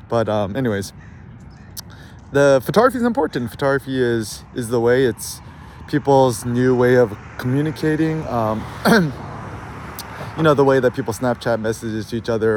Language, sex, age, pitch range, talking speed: English, male, 20-39, 105-135 Hz, 140 wpm